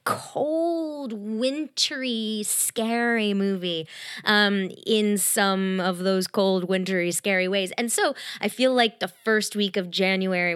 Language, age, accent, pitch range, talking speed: English, 20-39, American, 185-245 Hz, 130 wpm